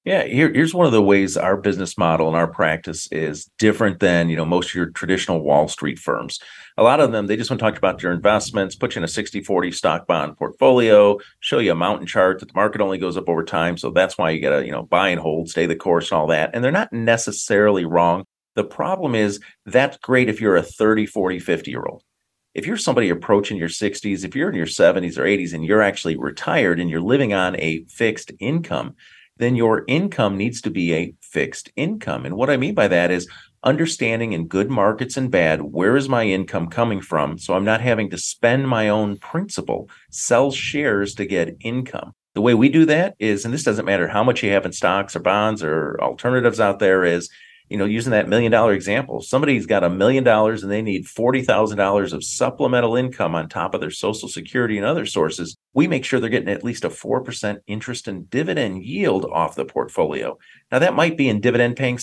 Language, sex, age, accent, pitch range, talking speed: English, male, 40-59, American, 90-120 Hz, 225 wpm